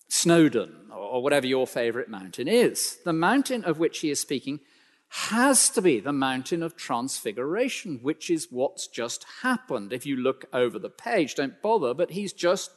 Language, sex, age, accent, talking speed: English, male, 50-69, British, 175 wpm